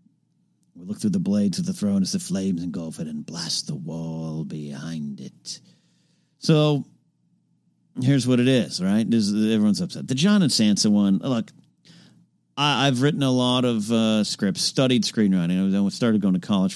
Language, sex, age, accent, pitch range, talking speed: English, male, 50-69, American, 125-190 Hz, 175 wpm